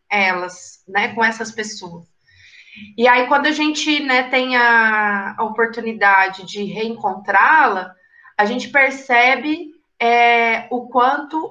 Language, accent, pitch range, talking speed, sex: Portuguese, Brazilian, 210-265 Hz, 110 wpm, female